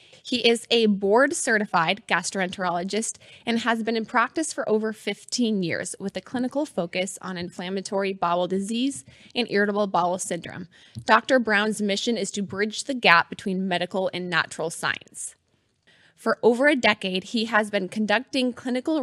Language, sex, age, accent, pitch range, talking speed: English, female, 20-39, American, 190-225 Hz, 150 wpm